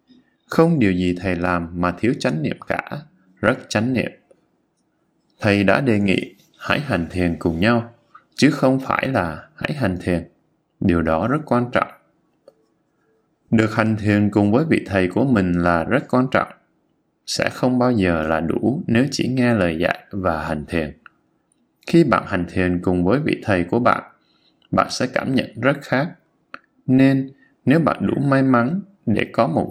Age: 20-39